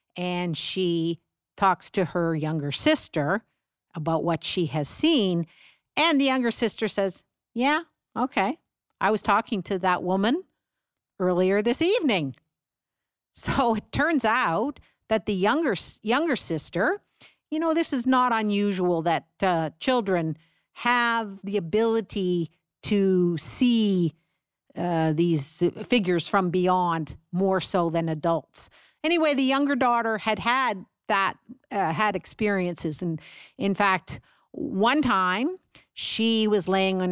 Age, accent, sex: 50-69, American, female